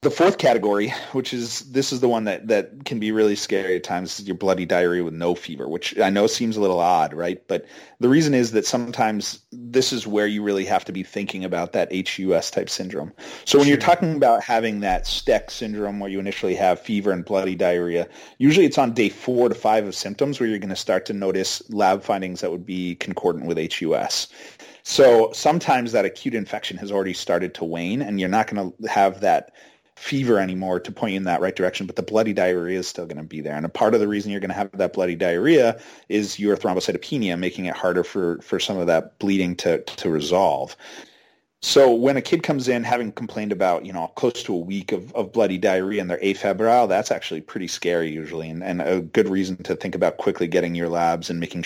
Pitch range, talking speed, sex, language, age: 90-110 Hz, 230 wpm, male, English, 30-49